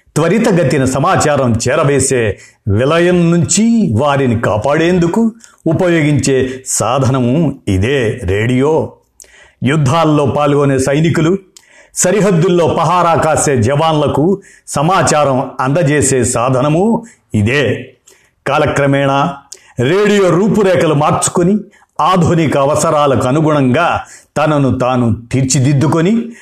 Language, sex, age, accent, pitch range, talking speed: Telugu, male, 50-69, native, 130-170 Hz, 75 wpm